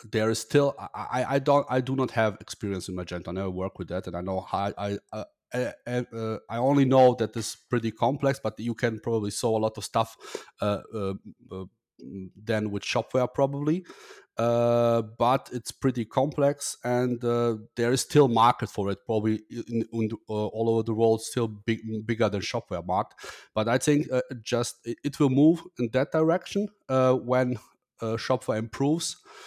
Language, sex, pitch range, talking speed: English, male, 105-125 Hz, 185 wpm